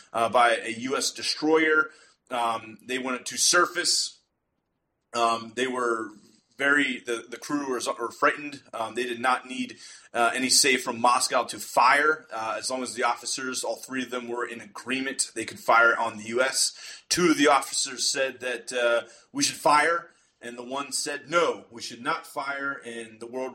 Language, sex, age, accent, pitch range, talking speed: English, male, 30-49, American, 115-140 Hz, 185 wpm